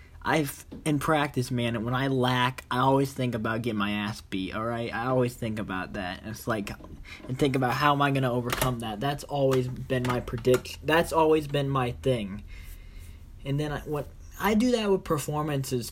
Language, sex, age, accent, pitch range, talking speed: English, male, 20-39, American, 105-140 Hz, 200 wpm